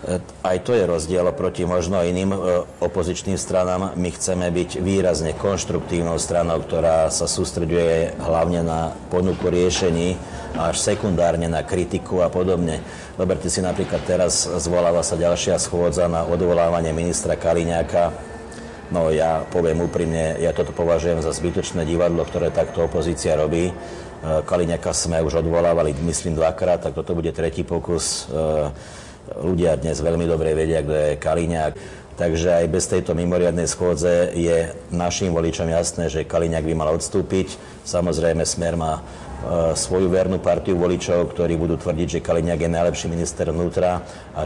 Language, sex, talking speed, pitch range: Slovak, male, 145 wpm, 80-90 Hz